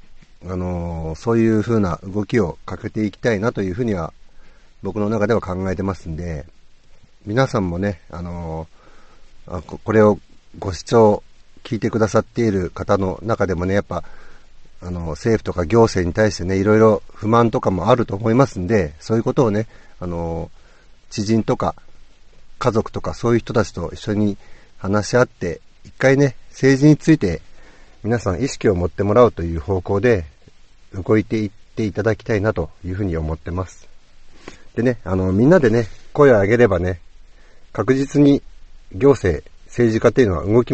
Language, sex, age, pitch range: Japanese, male, 50-69, 90-115 Hz